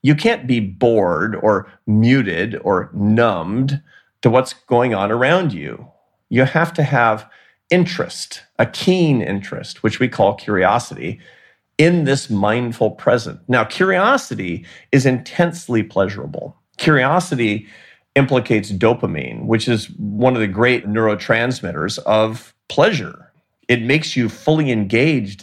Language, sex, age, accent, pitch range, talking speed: English, male, 40-59, American, 105-140 Hz, 125 wpm